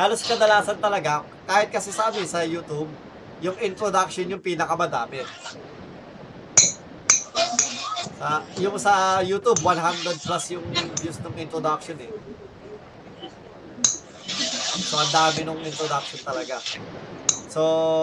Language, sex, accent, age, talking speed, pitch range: Filipino, male, native, 20-39, 105 wpm, 165-215 Hz